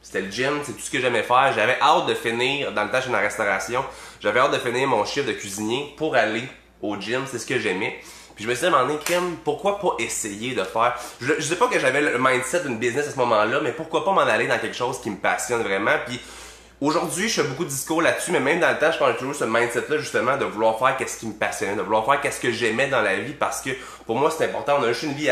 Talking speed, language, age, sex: 275 wpm, French, 20-39, male